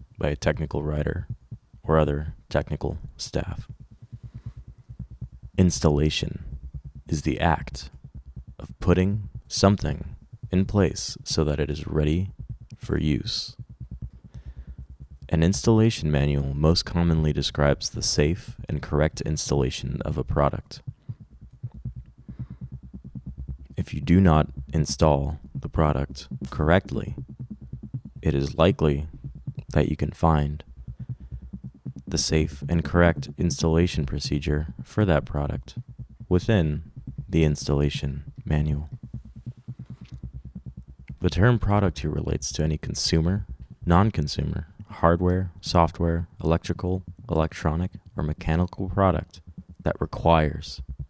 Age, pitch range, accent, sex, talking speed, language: 30-49, 70-95 Hz, American, male, 100 wpm, English